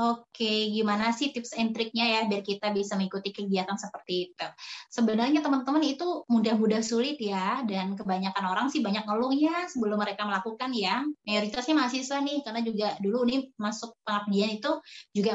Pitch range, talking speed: 205-255 Hz, 160 wpm